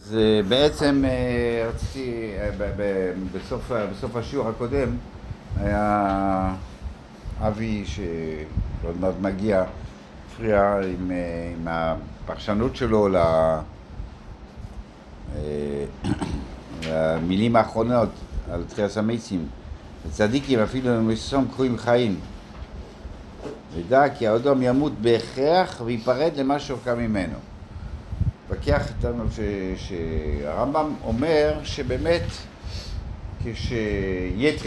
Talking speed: 80 wpm